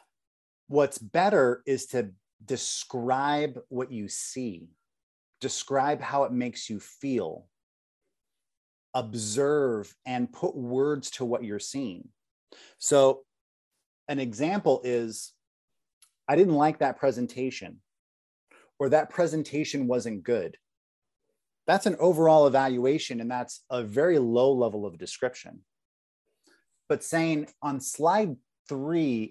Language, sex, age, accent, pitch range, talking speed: English, male, 30-49, American, 120-150 Hz, 110 wpm